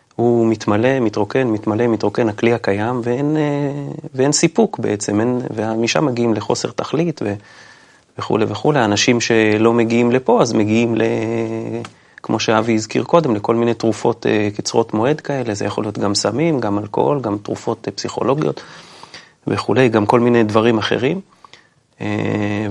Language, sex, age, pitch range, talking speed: Hebrew, male, 30-49, 105-130 Hz, 135 wpm